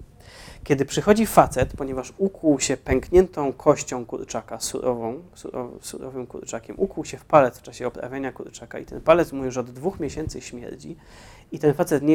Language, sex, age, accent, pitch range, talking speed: Polish, male, 30-49, native, 125-145 Hz, 160 wpm